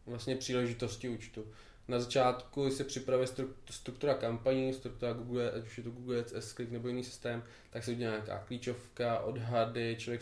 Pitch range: 115-125 Hz